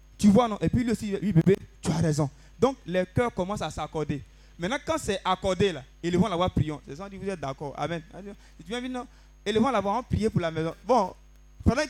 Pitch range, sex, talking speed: 135-205 Hz, male, 210 wpm